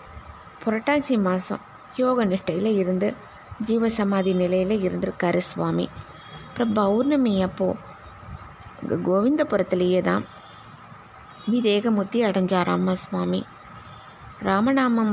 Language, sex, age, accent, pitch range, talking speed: Tamil, female, 20-39, native, 185-220 Hz, 65 wpm